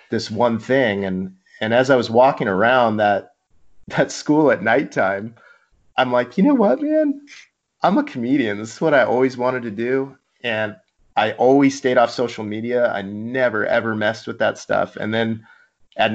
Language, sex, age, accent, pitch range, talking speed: English, male, 30-49, American, 100-120 Hz, 180 wpm